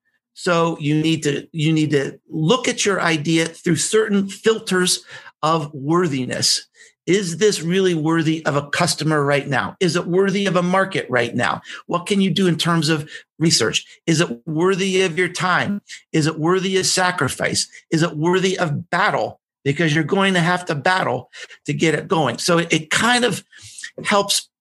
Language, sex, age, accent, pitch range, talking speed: English, male, 50-69, American, 145-190 Hz, 180 wpm